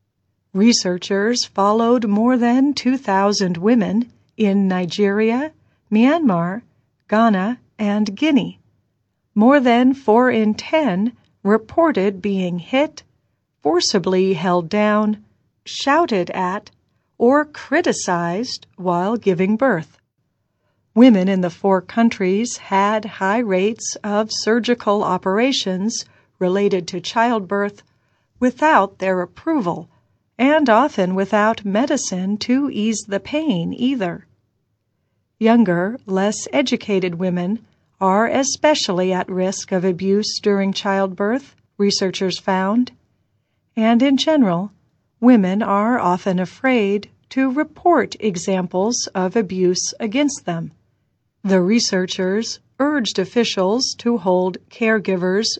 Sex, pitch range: female, 185-240 Hz